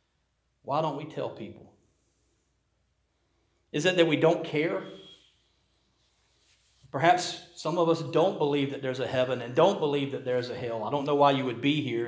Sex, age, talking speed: male, 40-59, 180 wpm